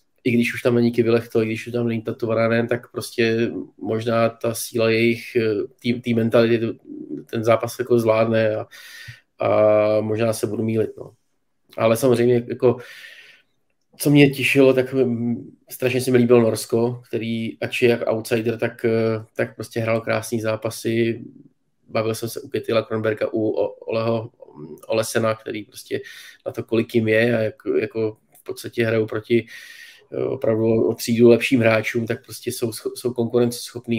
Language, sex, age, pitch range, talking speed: Czech, male, 20-39, 110-120 Hz, 155 wpm